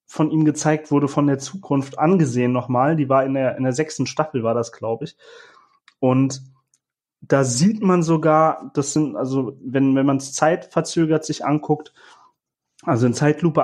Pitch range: 135-160 Hz